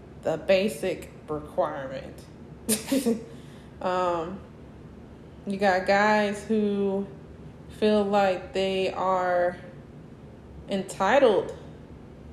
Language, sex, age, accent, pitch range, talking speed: English, female, 20-39, American, 185-230 Hz, 65 wpm